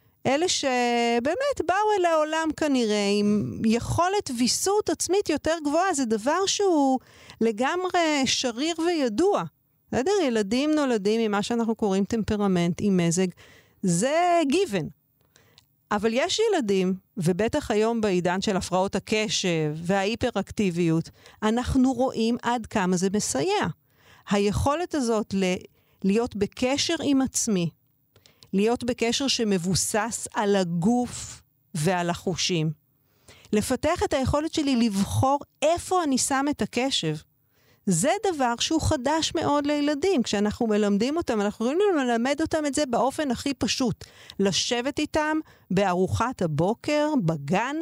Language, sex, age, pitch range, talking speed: Hebrew, female, 40-59, 195-305 Hz, 115 wpm